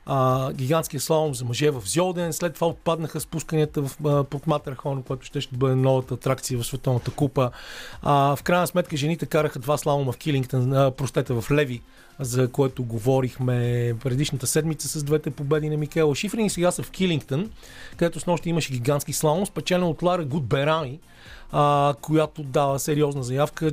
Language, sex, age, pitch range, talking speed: Bulgarian, male, 30-49, 125-155 Hz, 165 wpm